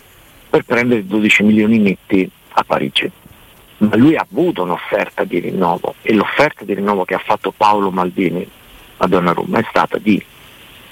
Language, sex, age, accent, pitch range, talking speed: Italian, male, 50-69, native, 100-120 Hz, 160 wpm